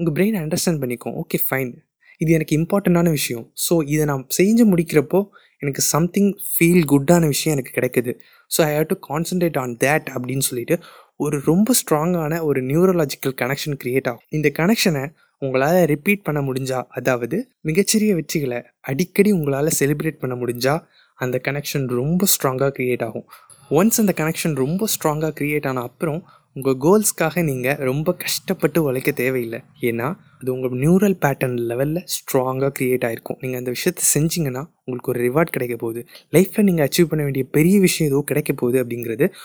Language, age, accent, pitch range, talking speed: Tamil, 20-39, native, 135-180 Hz, 155 wpm